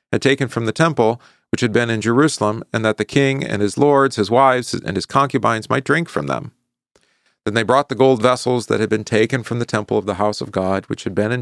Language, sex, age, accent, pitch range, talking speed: English, male, 40-59, American, 100-120 Hz, 250 wpm